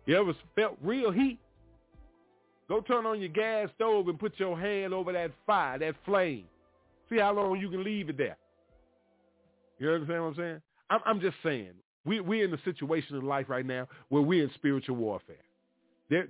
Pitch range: 145-200 Hz